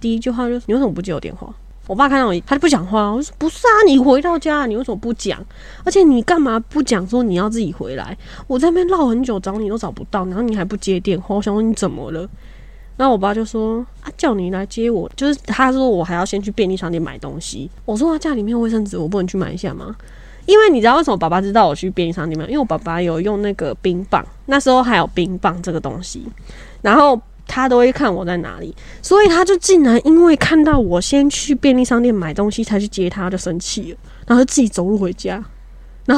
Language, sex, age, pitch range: Chinese, female, 20-39, 190-265 Hz